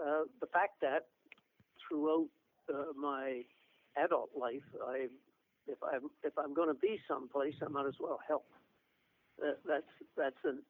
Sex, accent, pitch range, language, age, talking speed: male, American, 135-160 Hz, English, 60-79, 150 wpm